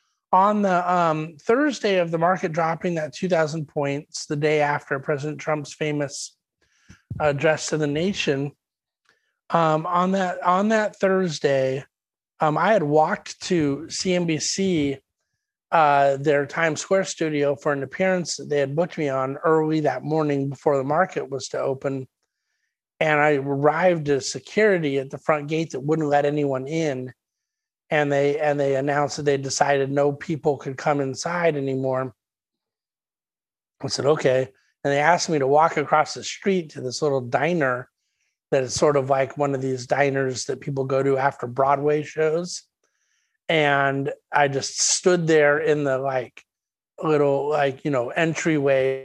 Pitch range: 135-165 Hz